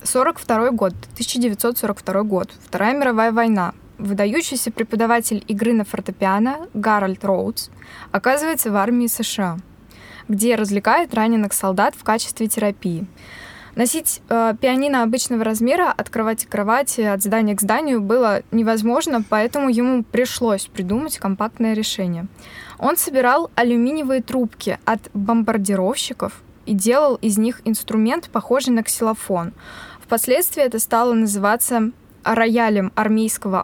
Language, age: Russian, 20-39